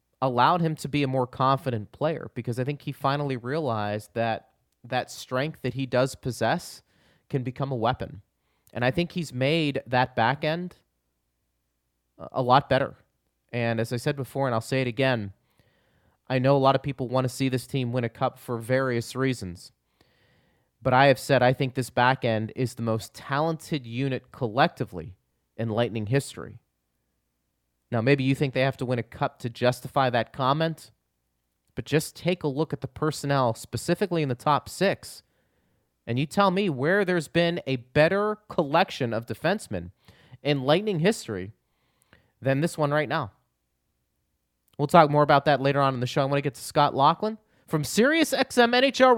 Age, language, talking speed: 30-49, English, 180 wpm